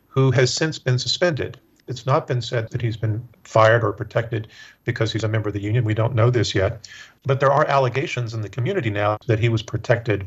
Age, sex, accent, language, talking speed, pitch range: 50-69, male, American, English, 230 wpm, 110-125 Hz